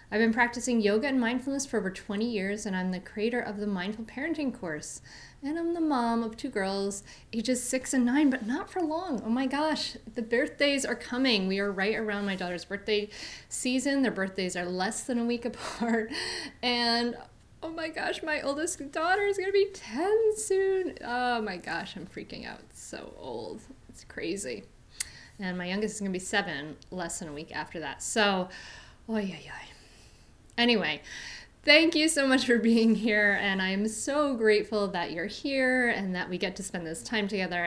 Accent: American